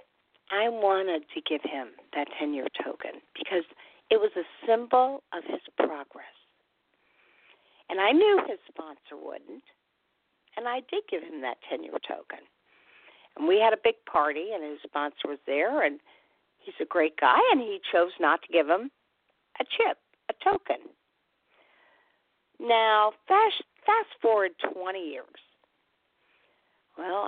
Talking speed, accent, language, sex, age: 140 wpm, American, English, female, 50-69